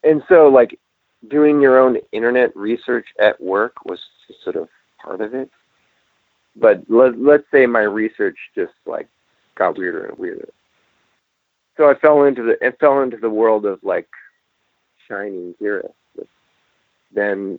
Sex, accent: male, American